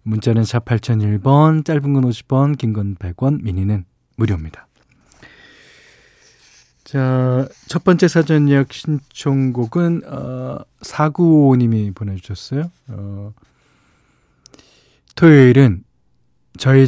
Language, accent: Korean, native